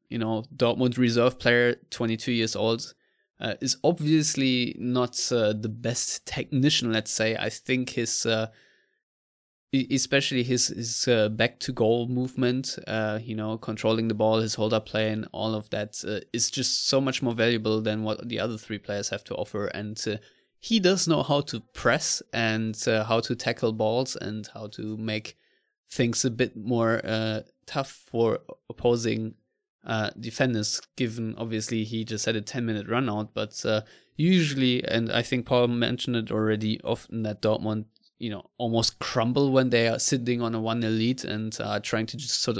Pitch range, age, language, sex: 110-125 Hz, 20-39, English, male